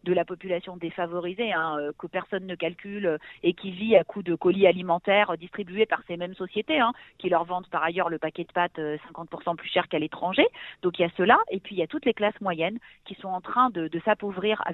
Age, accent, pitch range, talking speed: 40-59, French, 175-210 Hz, 235 wpm